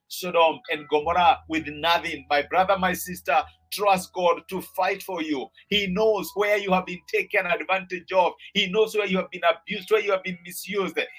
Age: 50-69